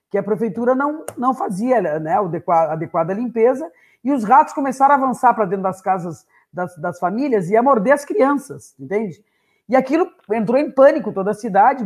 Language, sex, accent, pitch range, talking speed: Portuguese, female, Brazilian, 185-255 Hz, 185 wpm